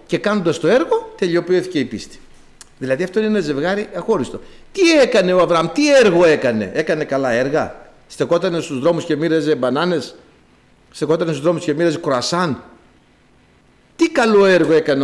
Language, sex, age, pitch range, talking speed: Greek, male, 60-79, 150-220 Hz, 155 wpm